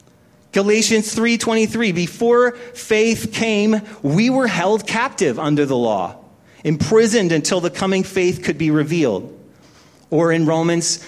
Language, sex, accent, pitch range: English, male, American, 165-220 Hz